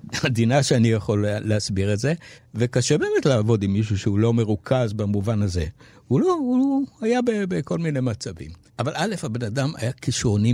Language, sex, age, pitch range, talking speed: Hebrew, male, 60-79, 110-150 Hz, 170 wpm